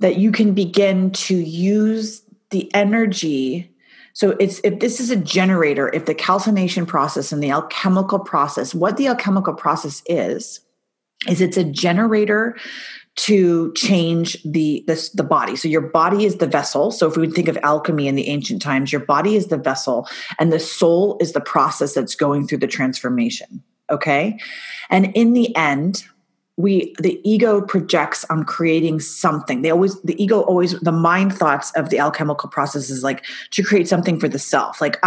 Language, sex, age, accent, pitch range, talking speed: English, female, 30-49, American, 155-205 Hz, 180 wpm